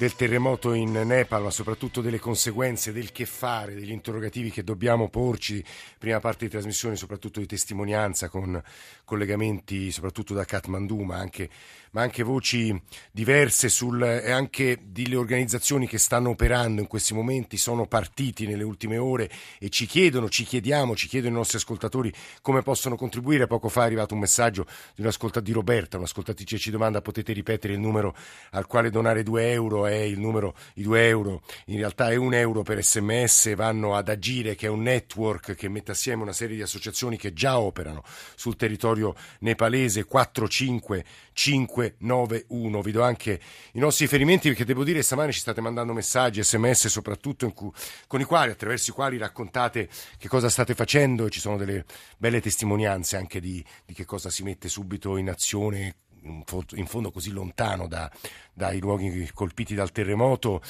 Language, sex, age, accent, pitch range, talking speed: Italian, male, 50-69, native, 100-120 Hz, 170 wpm